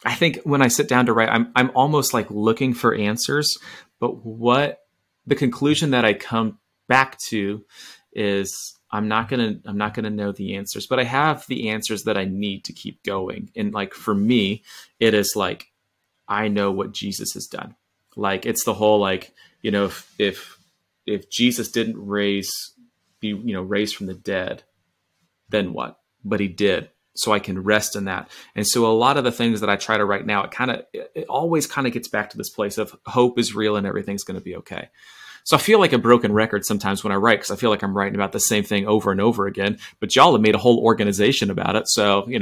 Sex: male